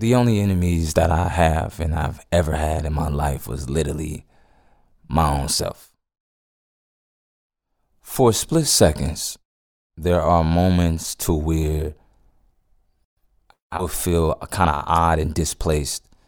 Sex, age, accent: male, 20-39, American